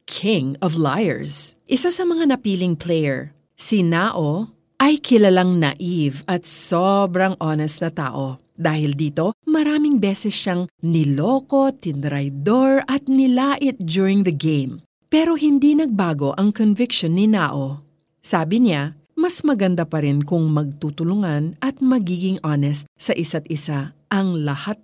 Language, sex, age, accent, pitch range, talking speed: Filipino, female, 40-59, native, 155-240 Hz, 130 wpm